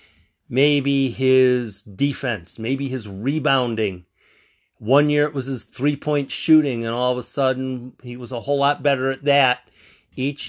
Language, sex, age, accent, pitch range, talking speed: English, male, 50-69, American, 110-165 Hz, 155 wpm